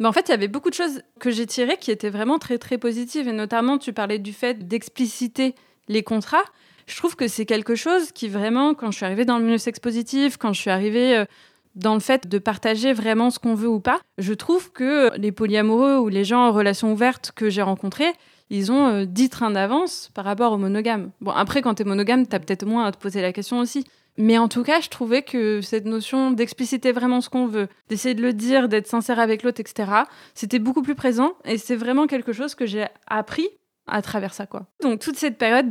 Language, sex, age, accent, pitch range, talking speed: French, female, 20-39, French, 210-255 Hz, 235 wpm